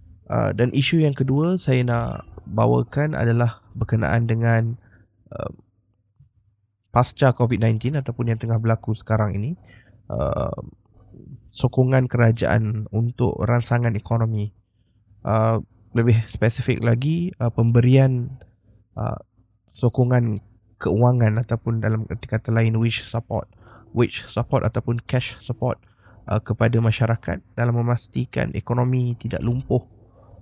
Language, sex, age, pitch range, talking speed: Malay, male, 20-39, 105-120 Hz, 105 wpm